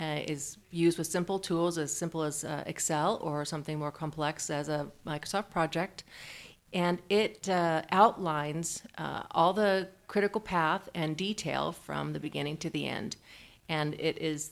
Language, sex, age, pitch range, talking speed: English, female, 40-59, 150-175 Hz, 160 wpm